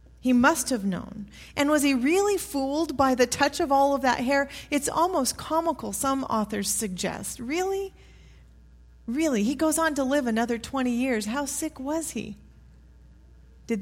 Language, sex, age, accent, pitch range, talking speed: English, female, 40-59, American, 200-280 Hz, 165 wpm